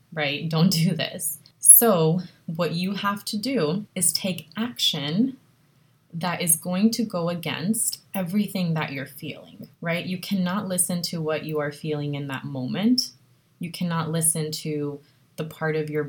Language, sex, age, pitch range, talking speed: English, female, 20-39, 145-175 Hz, 160 wpm